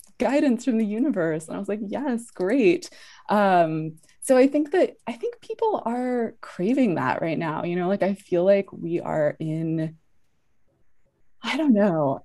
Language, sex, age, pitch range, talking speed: English, female, 20-39, 145-185 Hz, 170 wpm